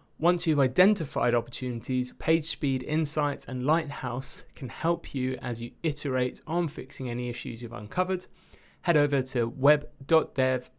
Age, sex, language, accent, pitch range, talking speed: 20-39, male, English, British, 120-155 Hz, 135 wpm